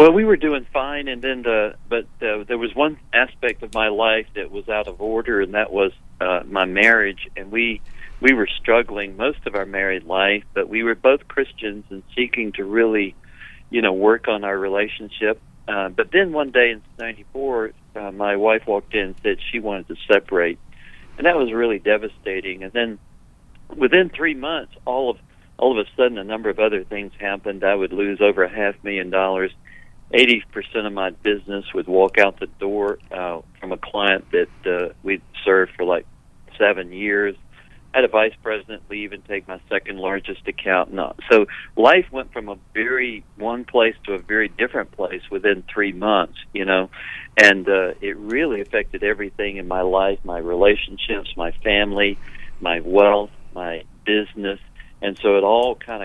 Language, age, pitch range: English, 50-69, 95-115 Hz